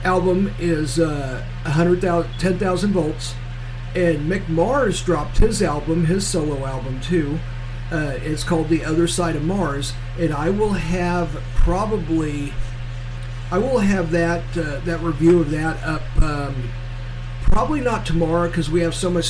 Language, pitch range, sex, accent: English, 125-175 Hz, male, American